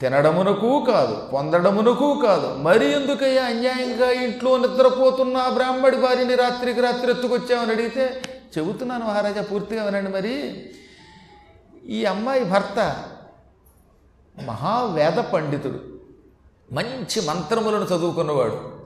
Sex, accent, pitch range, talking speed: male, native, 150-225 Hz, 90 wpm